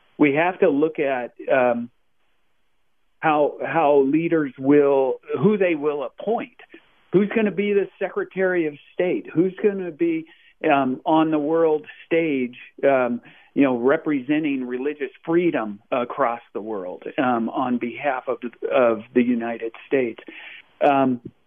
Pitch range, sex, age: 125-165 Hz, male, 50-69